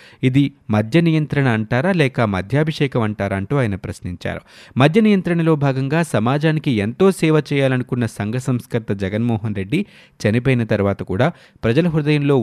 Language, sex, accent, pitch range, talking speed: Telugu, male, native, 110-150 Hz, 125 wpm